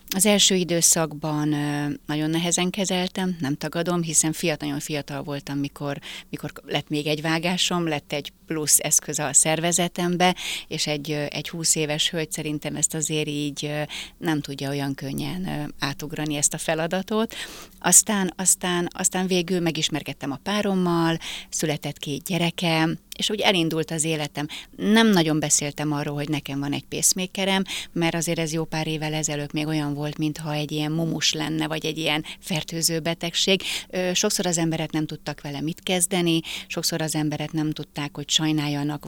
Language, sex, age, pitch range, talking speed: Hungarian, female, 30-49, 150-175 Hz, 155 wpm